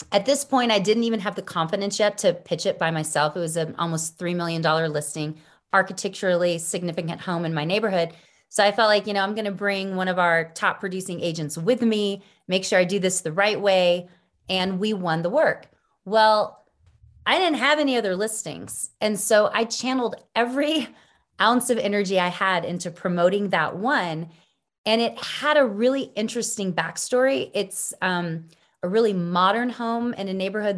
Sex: female